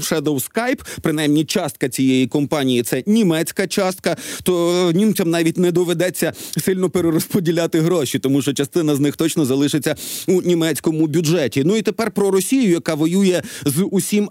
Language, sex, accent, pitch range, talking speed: Ukrainian, male, native, 155-190 Hz, 150 wpm